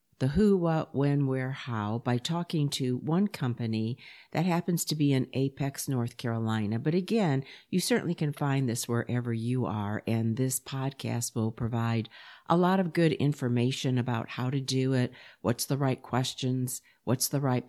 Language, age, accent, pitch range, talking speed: English, 50-69, American, 120-155 Hz, 175 wpm